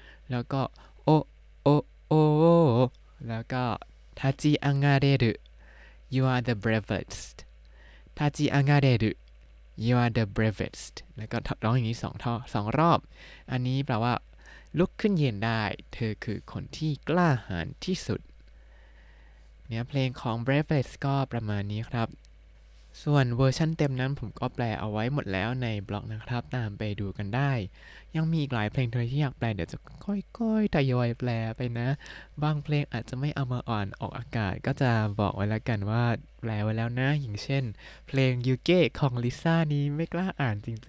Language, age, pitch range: Thai, 20-39, 105-140 Hz